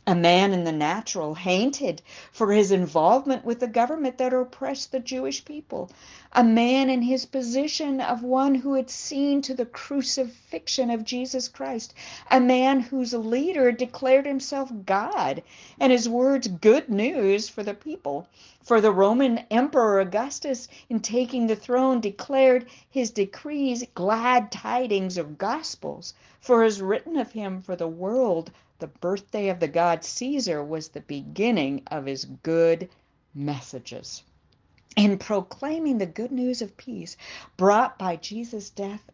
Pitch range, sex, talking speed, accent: 175-255 Hz, female, 145 wpm, American